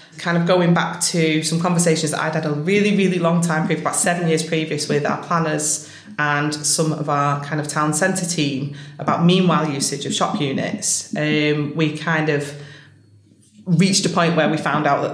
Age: 30-49